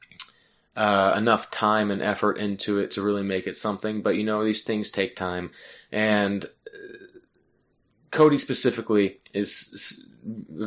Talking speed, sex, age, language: 140 wpm, male, 20-39, English